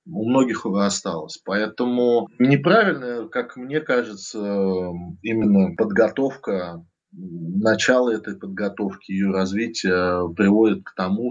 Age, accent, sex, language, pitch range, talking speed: 20-39, native, male, Russian, 95-115 Hz, 100 wpm